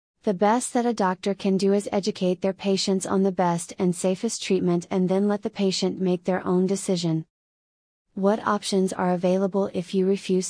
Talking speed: 190 wpm